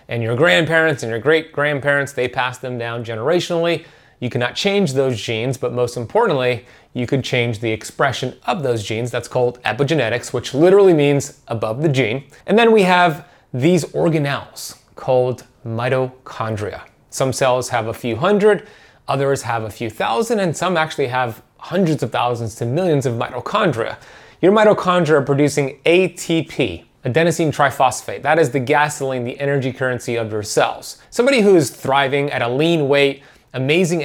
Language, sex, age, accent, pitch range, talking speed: English, male, 30-49, American, 125-160 Hz, 165 wpm